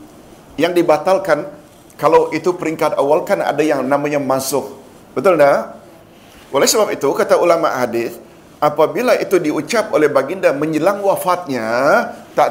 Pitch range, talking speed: 145-185 Hz, 130 wpm